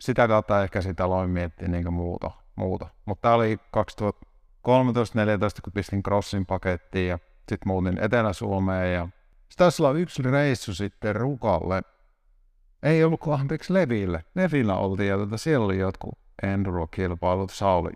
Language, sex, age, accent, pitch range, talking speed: Finnish, male, 60-79, native, 95-130 Hz, 140 wpm